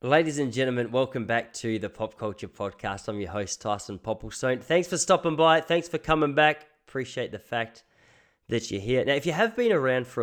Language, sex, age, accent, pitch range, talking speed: English, male, 20-39, Australian, 115-135 Hz, 210 wpm